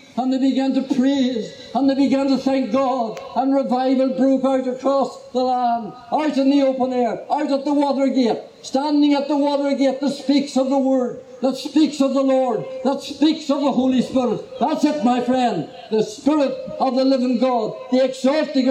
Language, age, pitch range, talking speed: English, 60-79, 220-265 Hz, 195 wpm